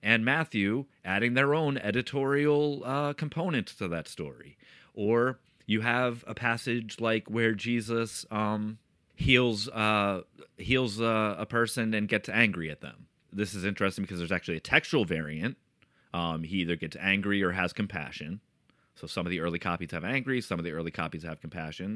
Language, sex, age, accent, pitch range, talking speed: English, male, 30-49, American, 90-115 Hz, 170 wpm